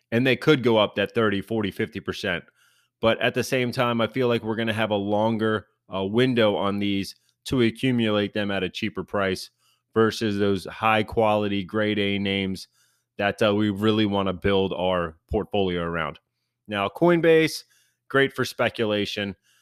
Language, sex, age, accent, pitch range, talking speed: English, male, 30-49, American, 95-115 Hz, 170 wpm